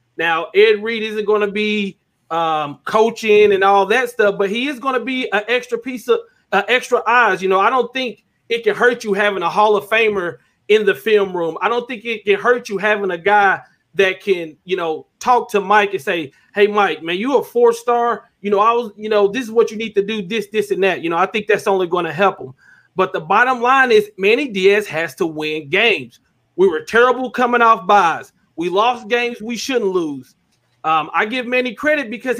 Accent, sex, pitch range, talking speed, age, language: American, male, 195-260 Hz, 235 wpm, 30-49, English